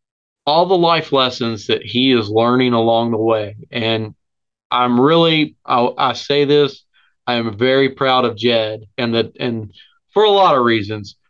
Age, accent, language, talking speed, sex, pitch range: 30-49, American, English, 170 wpm, male, 115-140 Hz